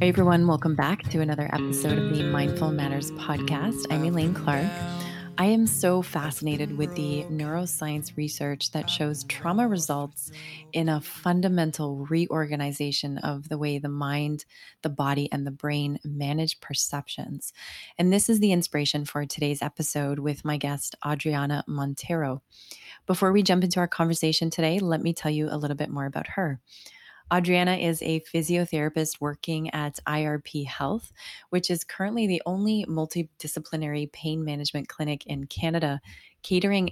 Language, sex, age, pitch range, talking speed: English, female, 20-39, 145-170 Hz, 155 wpm